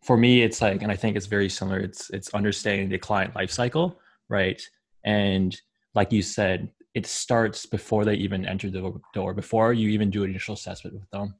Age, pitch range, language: 20-39, 95-110 Hz, English